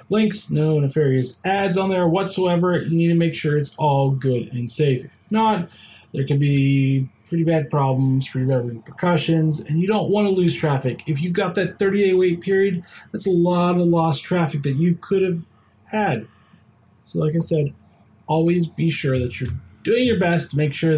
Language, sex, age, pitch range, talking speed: English, male, 20-39, 135-180 Hz, 190 wpm